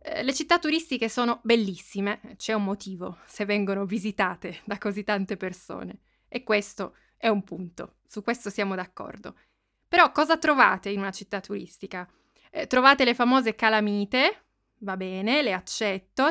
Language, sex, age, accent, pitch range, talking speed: Italian, female, 20-39, native, 200-260 Hz, 145 wpm